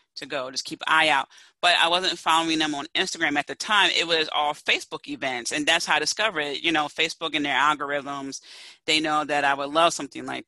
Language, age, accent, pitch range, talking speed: English, 30-49, American, 145-185 Hz, 230 wpm